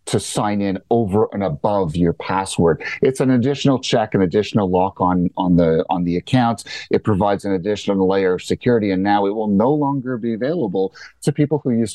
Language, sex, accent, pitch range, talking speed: English, male, American, 95-120 Hz, 200 wpm